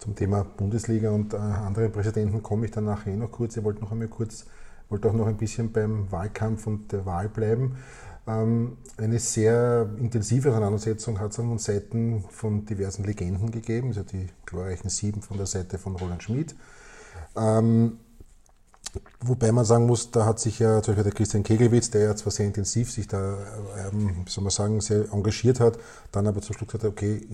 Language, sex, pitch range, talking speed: German, male, 105-115 Hz, 200 wpm